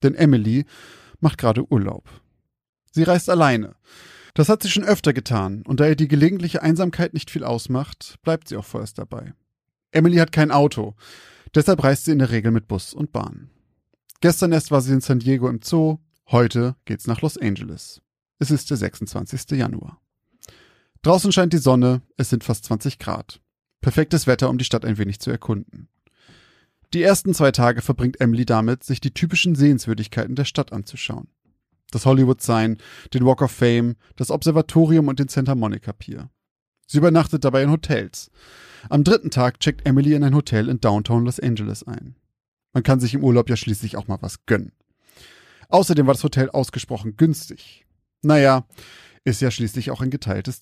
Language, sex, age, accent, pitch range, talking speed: German, male, 30-49, German, 115-150 Hz, 175 wpm